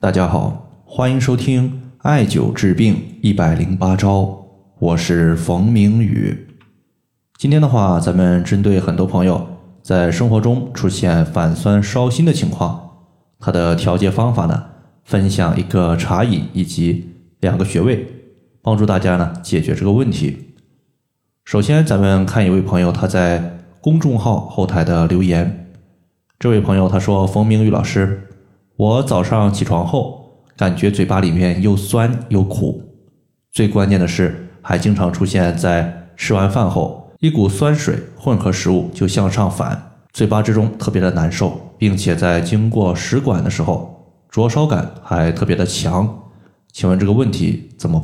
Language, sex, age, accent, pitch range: Chinese, male, 20-39, native, 90-120 Hz